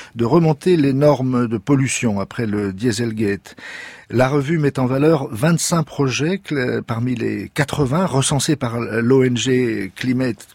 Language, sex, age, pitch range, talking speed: Spanish, male, 50-69, 115-150 Hz, 130 wpm